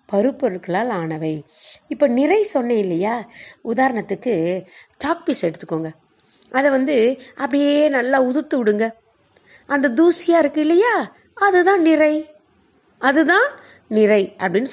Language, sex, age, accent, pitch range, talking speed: Tamil, female, 30-49, native, 190-290 Hz, 100 wpm